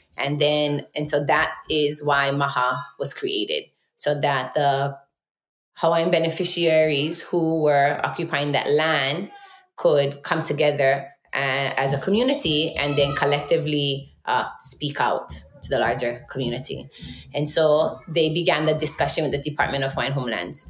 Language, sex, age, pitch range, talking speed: English, female, 20-39, 140-160 Hz, 140 wpm